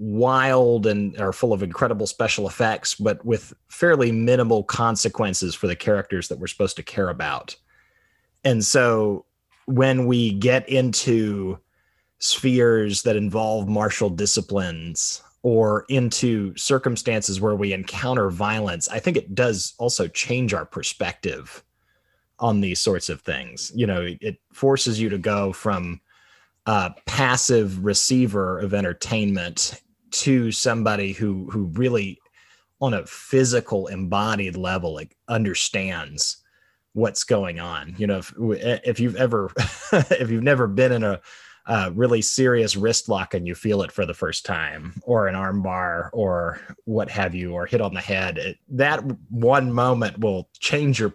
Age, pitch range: 30-49, 95-120 Hz